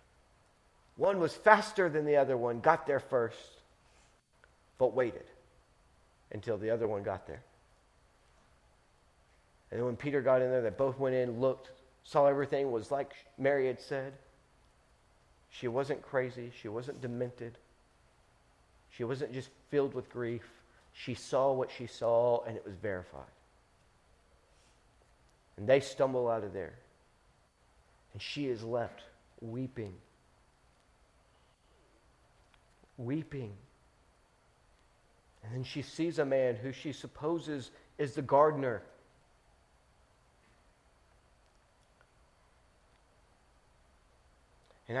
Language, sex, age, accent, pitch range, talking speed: English, male, 40-59, American, 105-165 Hz, 110 wpm